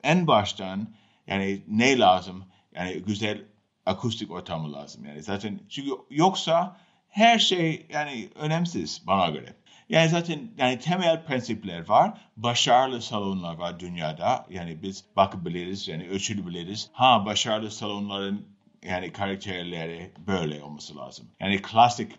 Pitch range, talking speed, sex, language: 100-160 Hz, 120 wpm, male, Turkish